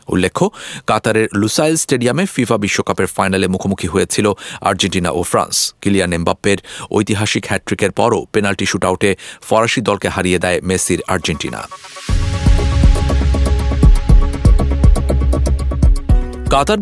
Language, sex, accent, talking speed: English, male, Indian, 90 wpm